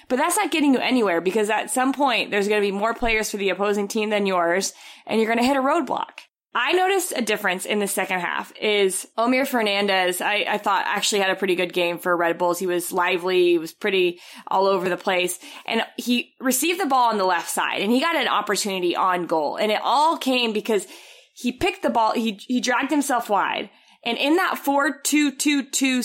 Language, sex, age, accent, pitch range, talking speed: English, female, 20-39, American, 205-270 Hz, 220 wpm